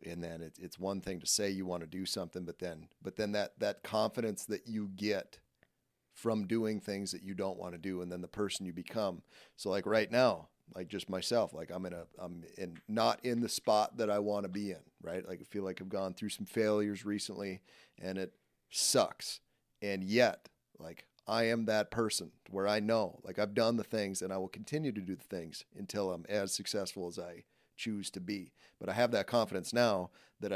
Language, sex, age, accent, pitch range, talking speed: English, male, 30-49, American, 95-110 Hz, 220 wpm